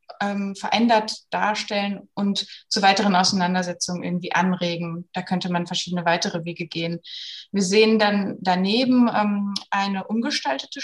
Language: German